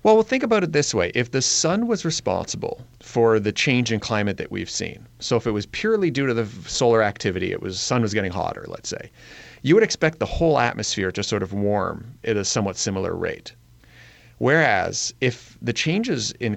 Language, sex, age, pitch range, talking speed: English, male, 30-49, 105-130 Hz, 210 wpm